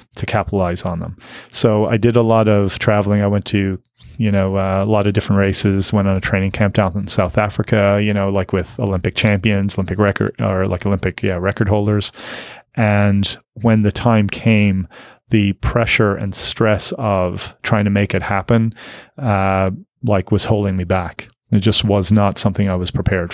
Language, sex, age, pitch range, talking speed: English, male, 30-49, 95-110 Hz, 190 wpm